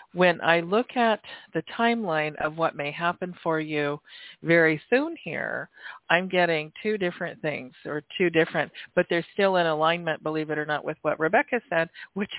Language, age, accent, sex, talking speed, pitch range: English, 40-59, American, female, 180 wpm, 160-210 Hz